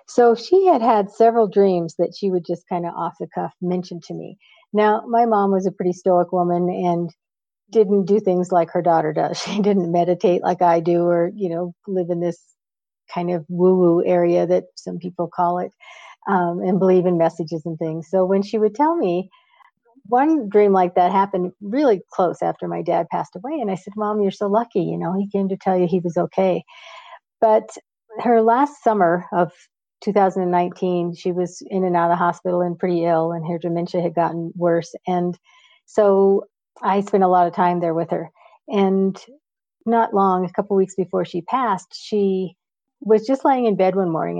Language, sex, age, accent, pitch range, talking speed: English, female, 50-69, American, 175-220 Hz, 200 wpm